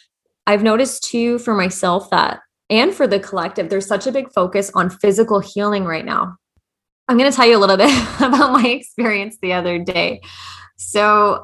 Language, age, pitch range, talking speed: English, 20-39, 180-225 Hz, 185 wpm